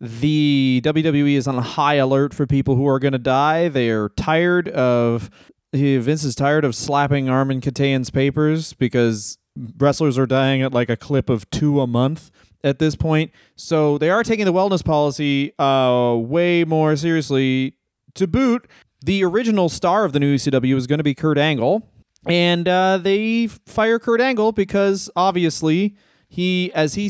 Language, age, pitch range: English, 30-49, 135-180 Hz